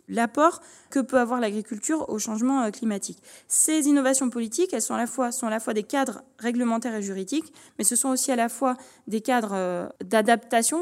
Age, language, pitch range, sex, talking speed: 20-39, French, 225-285 Hz, female, 200 wpm